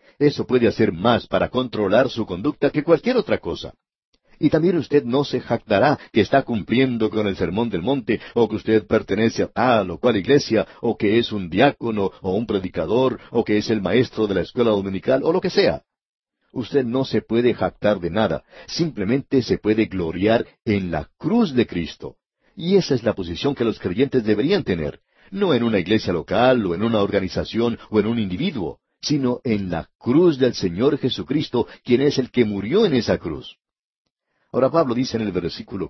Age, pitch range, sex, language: 60-79, 105-135 Hz, male, Spanish